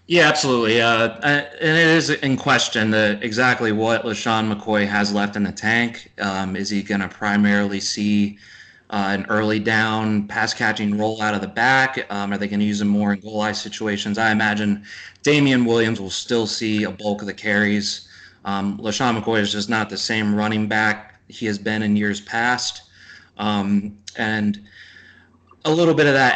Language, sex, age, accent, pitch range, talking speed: English, male, 30-49, American, 100-115 Hz, 185 wpm